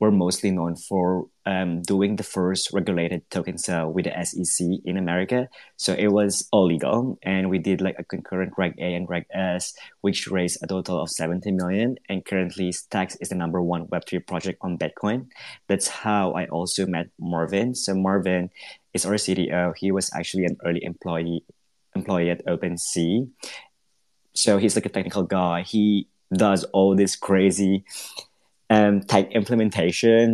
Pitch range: 90-100 Hz